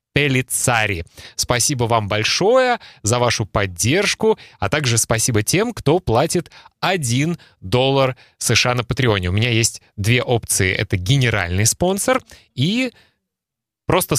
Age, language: 20-39, Russian